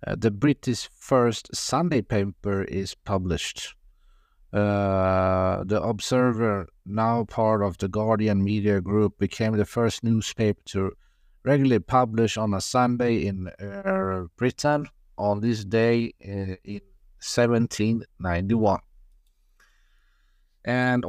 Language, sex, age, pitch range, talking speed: English, male, 50-69, 100-120 Hz, 100 wpm